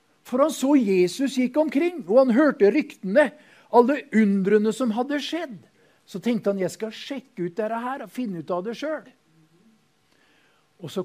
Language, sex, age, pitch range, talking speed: English, male, 50-69, 165-255 Hz, 170 wpm